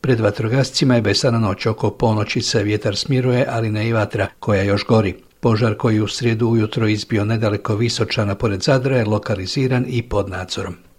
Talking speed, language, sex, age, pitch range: 175 wpm, Croatian, male, 60-79, 110-125 Hz